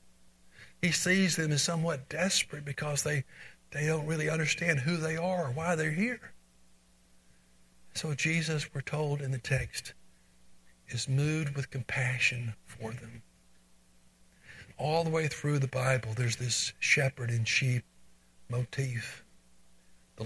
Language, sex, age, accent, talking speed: English, male, 60-79, American, 135 wpm